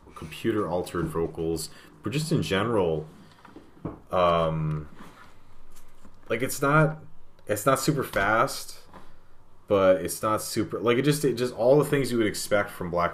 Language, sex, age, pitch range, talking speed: English, male, 30-49, 80-100 Hz, 140 wpm